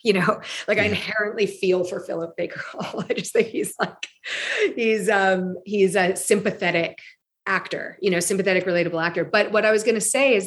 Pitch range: 190-230 Hz